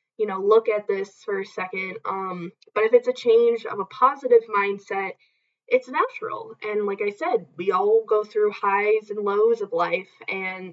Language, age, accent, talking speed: English, 10-29, American, 190 wpm